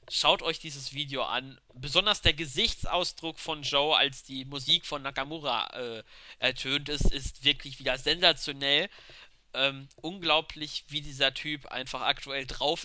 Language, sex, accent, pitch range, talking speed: German, male, German, 135-170 Hz, 140 wpm